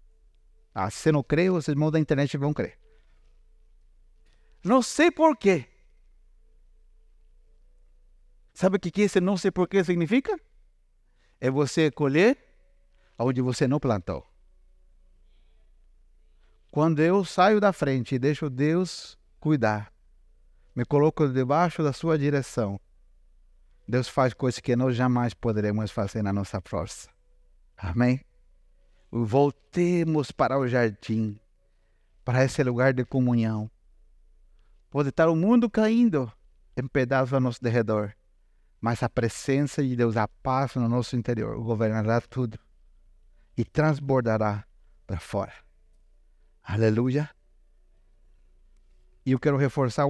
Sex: male